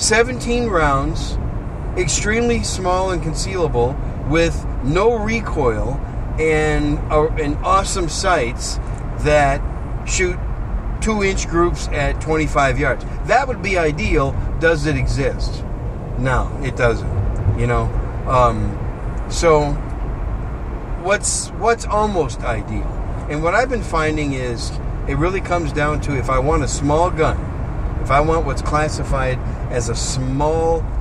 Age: 50-69